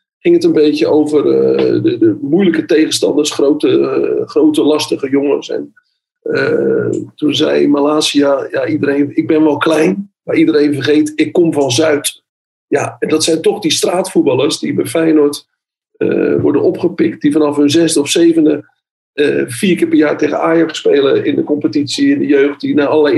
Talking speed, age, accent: 180 wpm, 50-69, Dutch